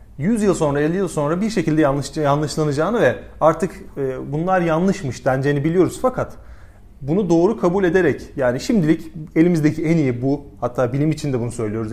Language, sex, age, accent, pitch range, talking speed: Turkish, male, 30-49, native, 135-180 Hz, 165 wpm